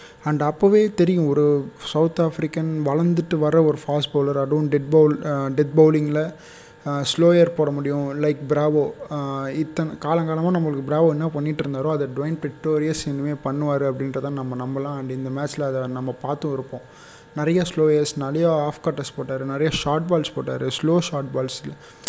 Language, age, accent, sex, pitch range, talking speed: Tamil, 20-39, native, male, 140-160 Hz, 150 wpm